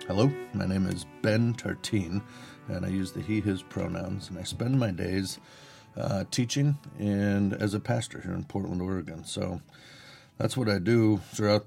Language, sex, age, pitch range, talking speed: English, male, 50-69, 95-125 Hz, 175 wpm